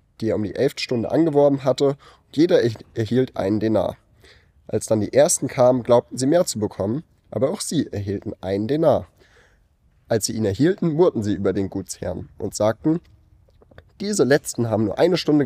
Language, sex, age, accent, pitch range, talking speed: German, male, 30-49, German, 100-125 Hz, 180 wpm